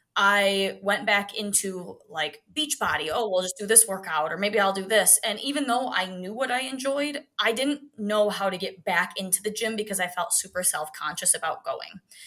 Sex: female